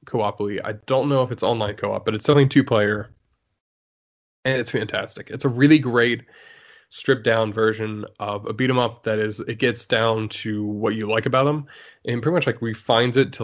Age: 20-39